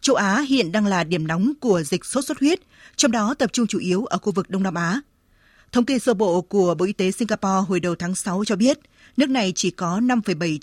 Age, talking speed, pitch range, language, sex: 20-39, 250 wpm, 190-245 Hz, Vietnamese, female